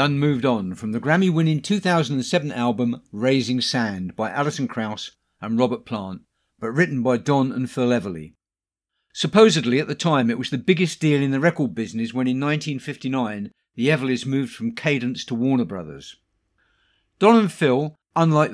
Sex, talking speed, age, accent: male, 165 wpm, 50-69, British